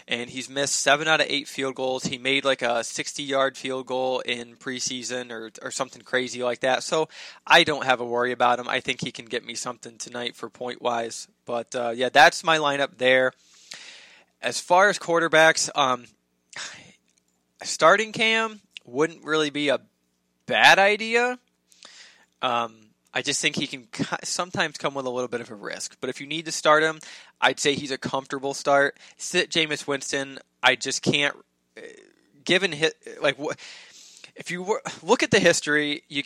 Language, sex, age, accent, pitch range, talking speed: English, male, 20-39, American, 125-160 Hz, 175 wpm